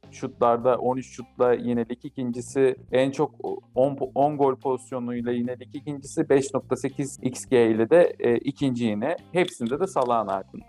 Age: 50-69